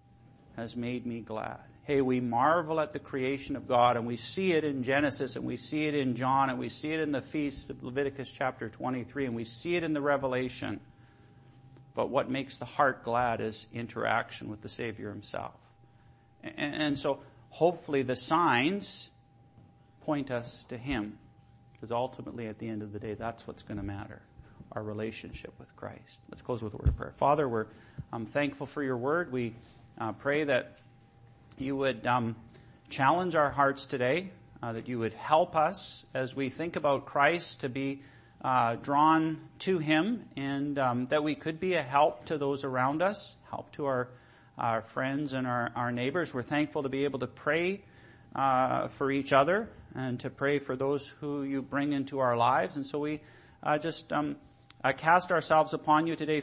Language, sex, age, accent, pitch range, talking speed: English, male, 50-69, American, 120-145 Hz, 190 wpm